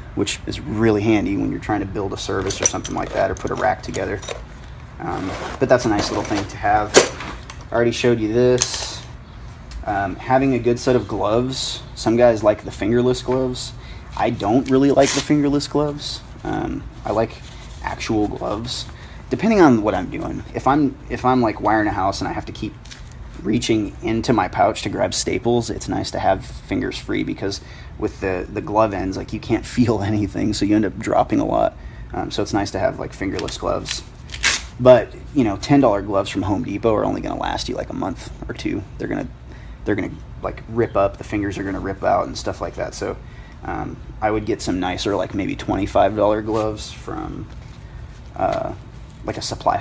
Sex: male